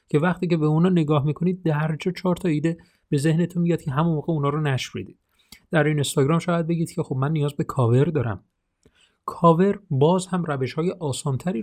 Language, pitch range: Persian, 135-175 Hz